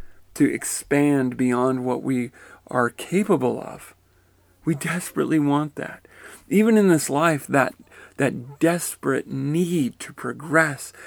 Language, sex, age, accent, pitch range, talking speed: English, male, 40-59, American, 115-150 Hz, 120 wpm